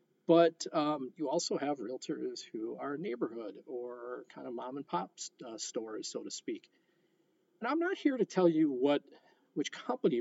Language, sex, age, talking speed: English, male, 40-59, 175 wpm